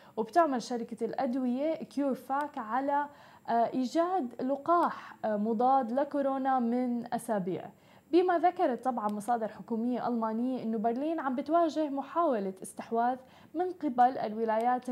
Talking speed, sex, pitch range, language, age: 105 wpm, female, 220-265 Hz, Arabic, 20-39